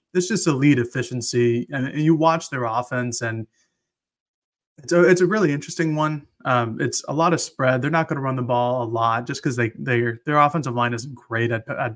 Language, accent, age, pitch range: English, American, 20-39, 115-140 Hz